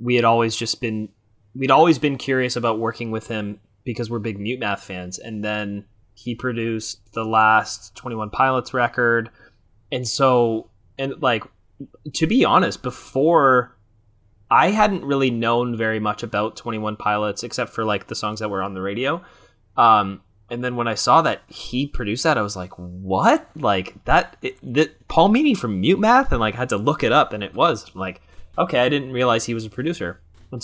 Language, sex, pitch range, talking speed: English, male, 100-120 Hz, 195 wpm